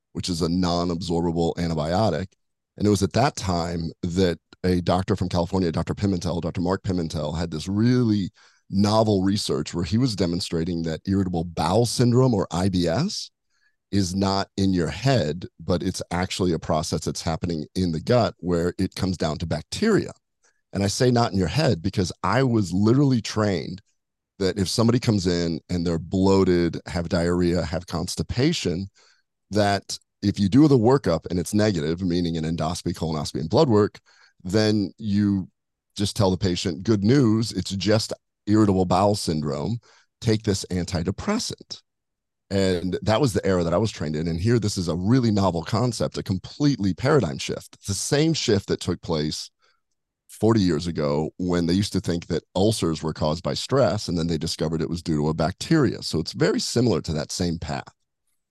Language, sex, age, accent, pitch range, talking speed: English, male, 40-59, American, 85-105 Hz, 180 wpm